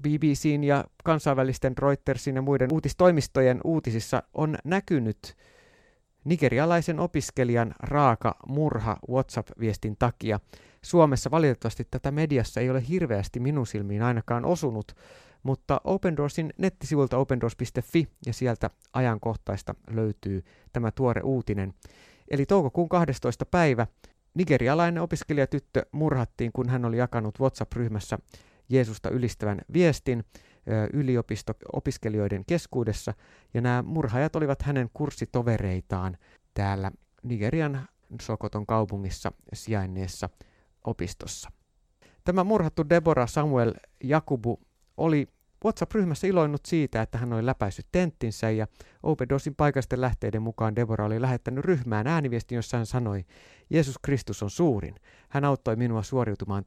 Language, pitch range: Finnish, 110-145 Hz